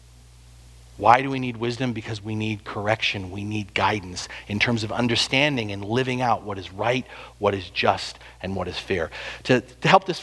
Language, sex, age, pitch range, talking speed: English, male, 40-59, 110-170 Hz, 195 wpm